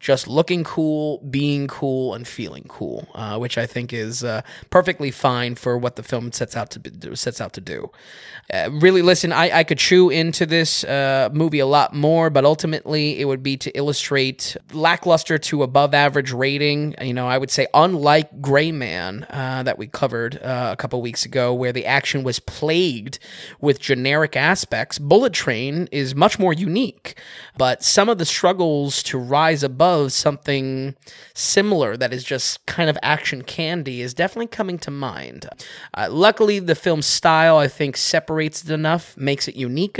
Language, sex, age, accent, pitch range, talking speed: English, male, 20-39, American, 125-165 Hz, 175 wpm